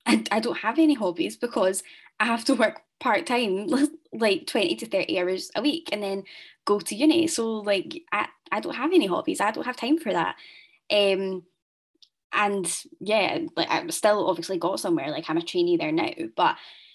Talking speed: 190 wpm